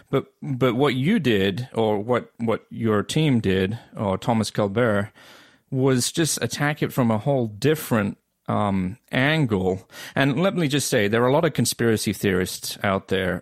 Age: 40-59